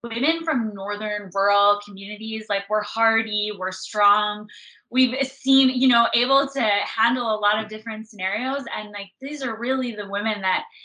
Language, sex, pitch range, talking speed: English, female, 190-225 Hz, 165 wpm